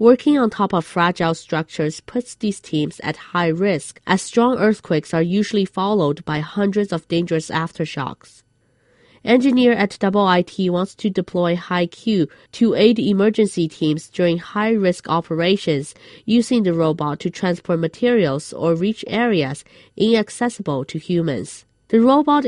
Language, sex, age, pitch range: Chinese, female, 30-49, 160-210 Hz